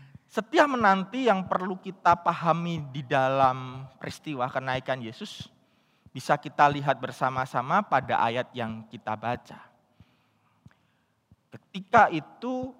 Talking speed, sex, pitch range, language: 105 wpm, male, 135-215 Hz, Indonesian